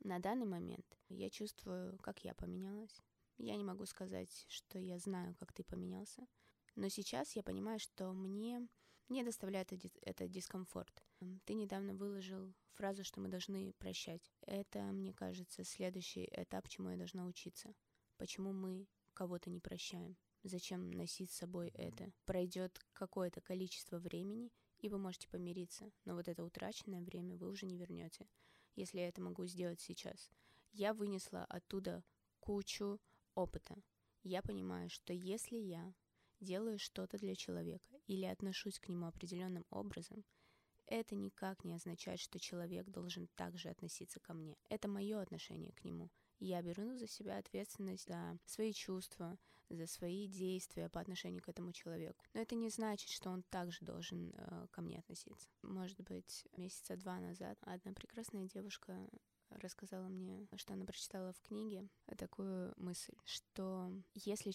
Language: Russian